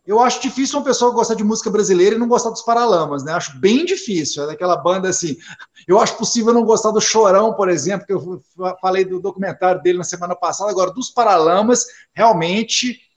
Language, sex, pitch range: Portuguese, male, 175-235 Hz